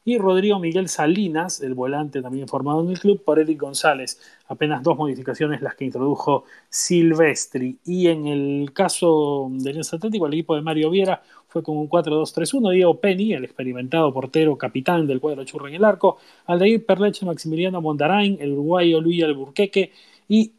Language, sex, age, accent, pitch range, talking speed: Spanish, male, 30-49, Argentinian, 150-195 Hz, 170 wpm